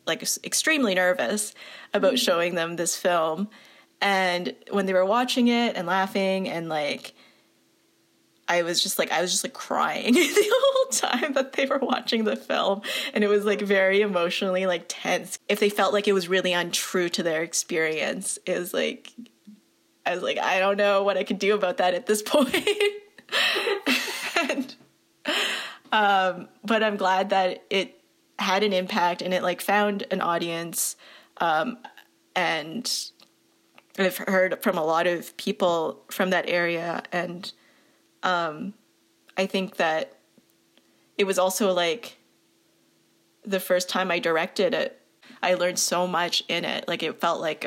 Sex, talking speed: female, 155 wpm